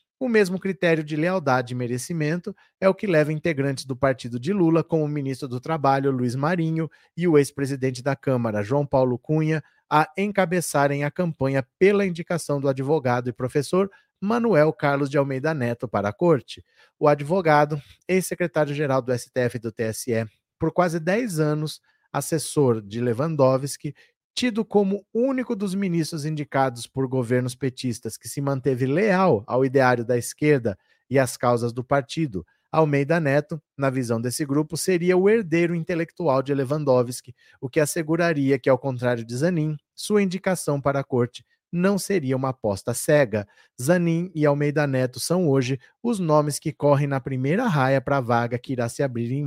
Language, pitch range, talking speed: Portuguese, 130-165 Hz, 165 wpm